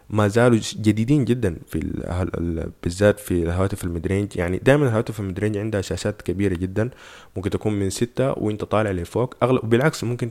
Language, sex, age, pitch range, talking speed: Arabic, male, 20-39, 95-120 Hz, 150 wpm